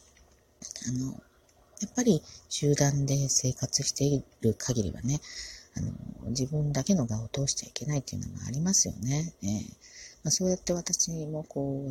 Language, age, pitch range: Japanese, 40-59, 120-150 Hz